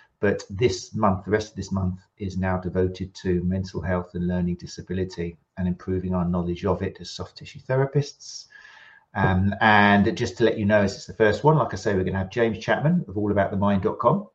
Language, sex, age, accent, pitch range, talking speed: English, male, 40-59, British, 95-115 Hz, 210 wpm